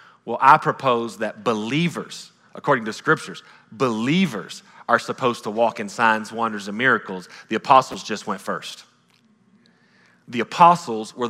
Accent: American